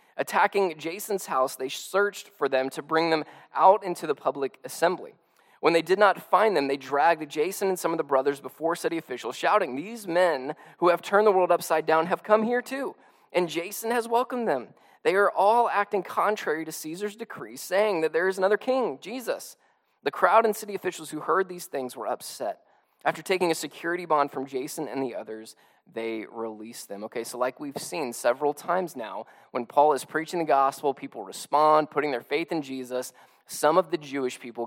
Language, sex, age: English, male, 20-39